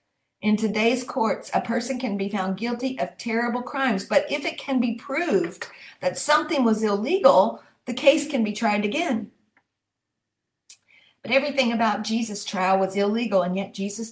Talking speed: 160 wpm